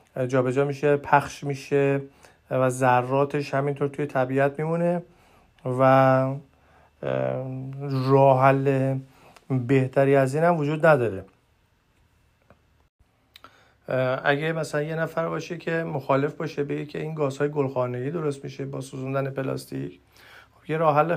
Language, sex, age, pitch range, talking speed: Persian, male, 40-59, 135-155 Hz, 115 wpm